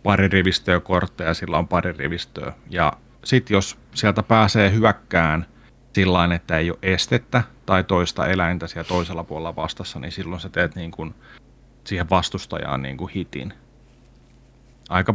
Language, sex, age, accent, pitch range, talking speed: Finnish, male, 30-49, native, 90-115 Hz, 145 wpm